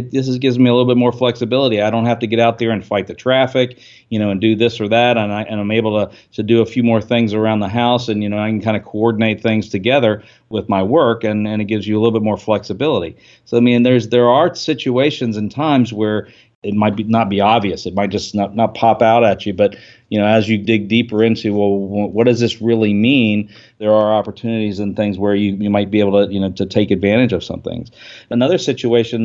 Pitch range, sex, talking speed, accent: 105-120 Hz, male, 260 wpm, American